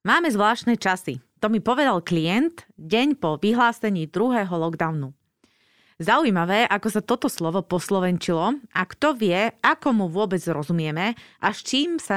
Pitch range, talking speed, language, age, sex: 170-235 Hz, 145 wpm, Slovak, 30-49, female